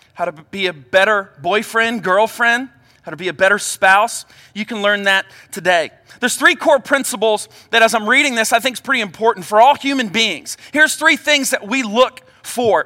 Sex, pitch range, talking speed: male, 205-270 Hz, 200 wpm